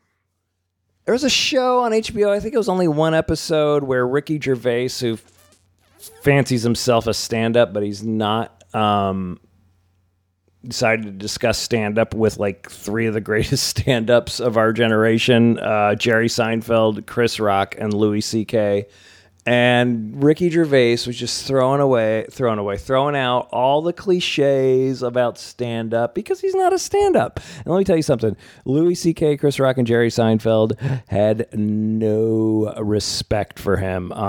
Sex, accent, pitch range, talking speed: male, American, 110-155 Hz, 150 wpm